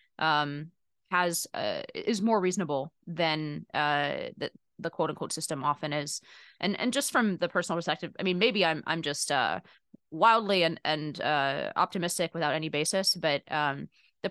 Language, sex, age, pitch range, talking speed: English, female, 20-39, 150-185 Hz, 170 wpm